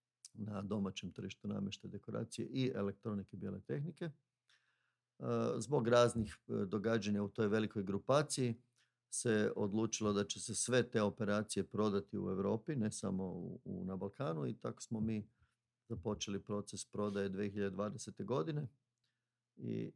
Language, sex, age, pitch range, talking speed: Croatian, male, 50-69, 100-120 Hz, 125 wpm